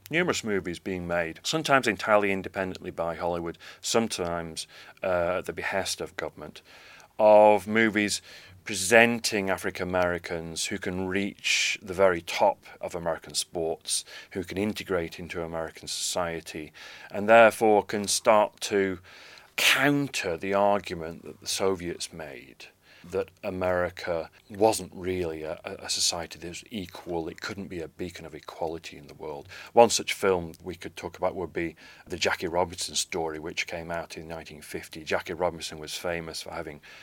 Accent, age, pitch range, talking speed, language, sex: British, 40-59, 85-100 Hz, 145 wpm, English, male